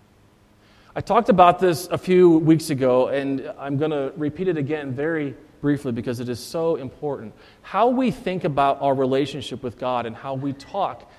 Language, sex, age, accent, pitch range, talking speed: English, male, 40-59, American, 115-170 Hz, 180 wpm